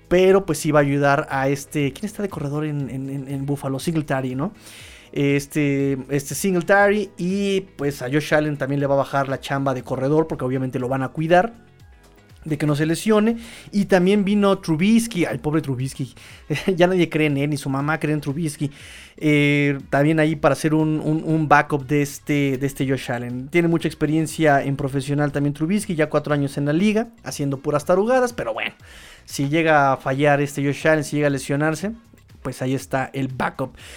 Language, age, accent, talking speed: Spanish, 30-49, Mexican, 195 wpm